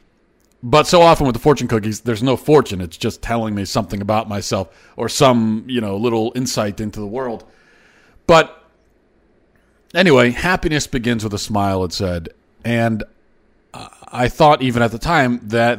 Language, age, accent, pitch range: English, 40-59, American, 105-130 Hz